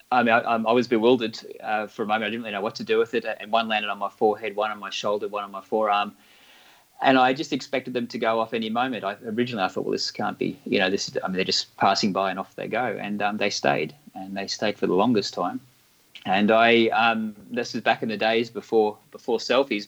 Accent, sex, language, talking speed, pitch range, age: Australian, male, English, 265 wpm, 100-120 Hz, 30-49